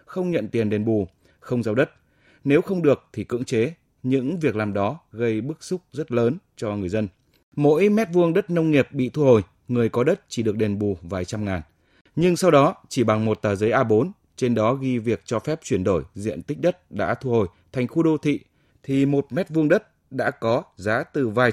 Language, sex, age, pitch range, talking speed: Vietnamese, male, 20-39, 105-140 Hz, 230 wpm